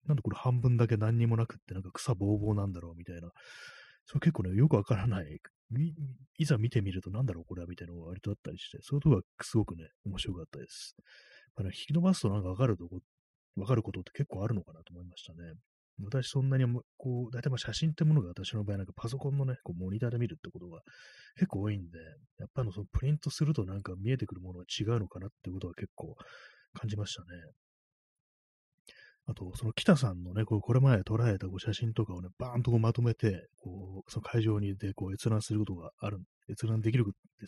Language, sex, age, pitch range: Japanese, male, 30-49, 95-125 Hz